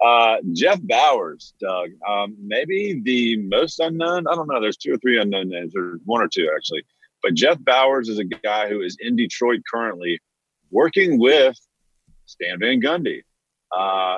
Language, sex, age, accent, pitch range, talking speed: English, male, 40-59, American, 100-120 Hz, 170 wpm